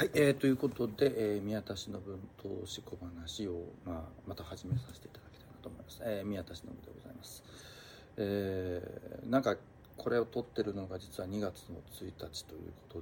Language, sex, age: Japanese, male, 40-59